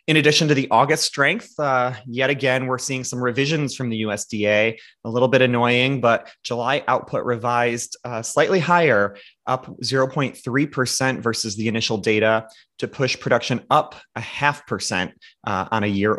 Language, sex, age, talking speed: English, male, 30-49, 165 wpm